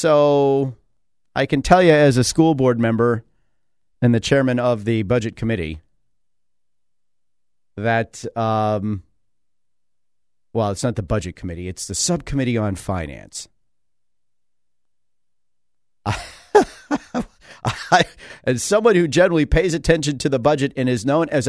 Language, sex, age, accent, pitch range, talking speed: English, male, 40-59, American, 95-150 Hz, 120 wpm